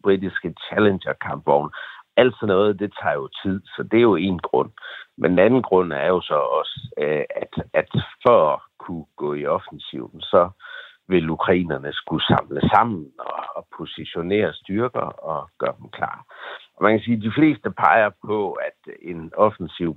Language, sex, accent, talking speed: Danish, male, native, 170 wpm